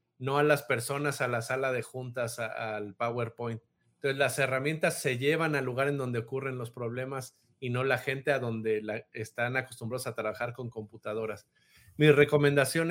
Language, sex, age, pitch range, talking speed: Spanish, male, 50-69, 115-145 Hz, 180 wpm